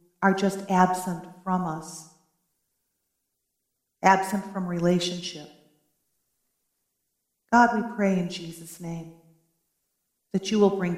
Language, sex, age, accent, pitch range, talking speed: English, female, 40-59, American, 175-195 Hz, 100 wpm